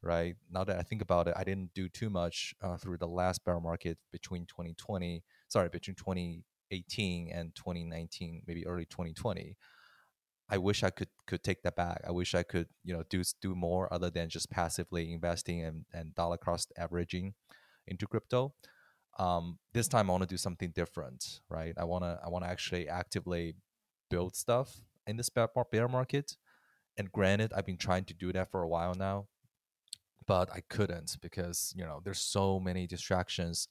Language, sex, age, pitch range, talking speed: English, male, 20-39, 85-95 Hz, 185 wpm